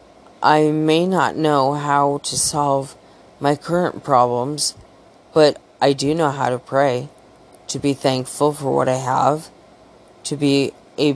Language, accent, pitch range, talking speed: English, American, 140-155 Hz, 145 wpm